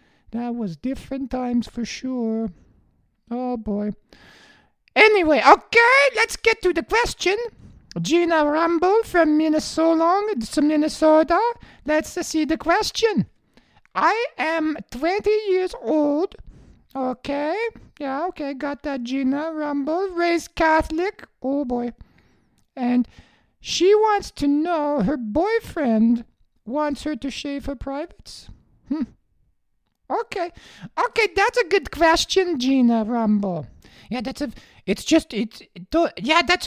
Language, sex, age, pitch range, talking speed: English, male, 50-69, 275-375 Hz, 115 wpm